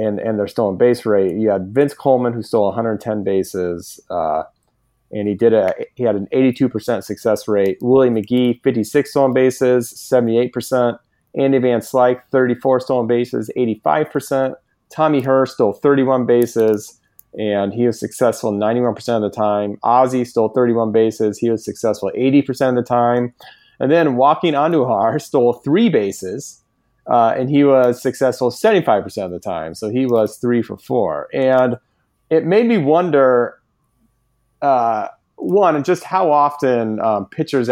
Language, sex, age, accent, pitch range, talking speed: English, male, 30-49, American, 110-135 Hz, 160 wpm